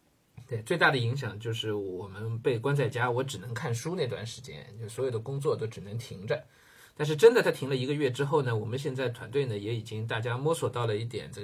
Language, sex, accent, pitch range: Chinese, male, native, 115-145 Hz